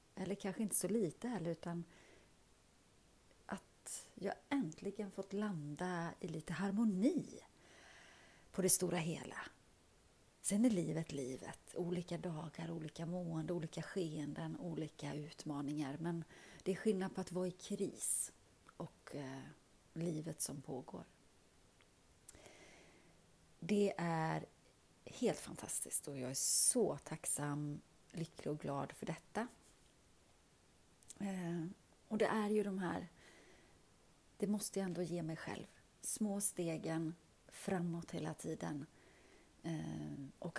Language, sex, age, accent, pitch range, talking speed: Swedish, female, 30-49, native, 160-195 Hz, 110 wpm